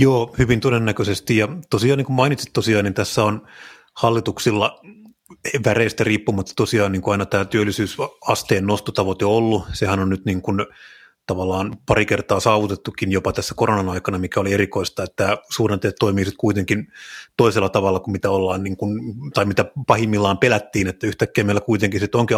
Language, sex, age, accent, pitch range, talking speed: Finnish, male, 30-49, native, 100-125 Hz, 160 wpm